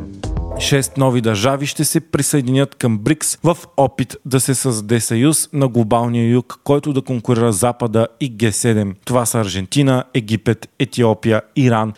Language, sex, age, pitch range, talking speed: Bulgarian, male, 40-59, 110-140 Hz, 150 wpm